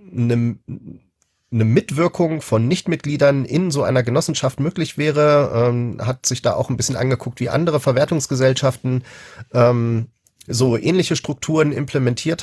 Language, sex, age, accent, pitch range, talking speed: German, male, 40-59, German, 120-150 Hz, 130 wpm